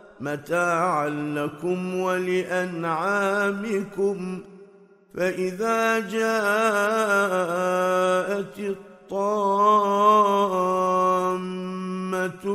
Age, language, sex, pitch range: 50-69, Arabic, male, 185-210 Hz